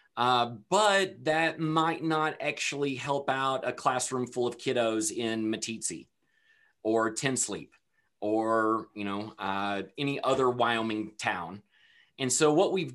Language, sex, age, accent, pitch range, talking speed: English, male, 30-49, American, 135-165 Hz, 135 wpm